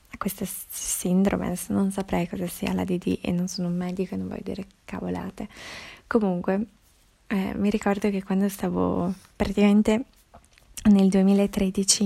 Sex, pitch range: female, 185-205 Hz